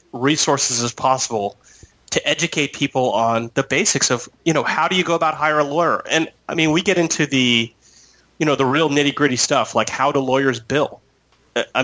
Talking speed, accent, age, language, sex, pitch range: 205 wpm, American, 30-49, English, male, 120-155 Hz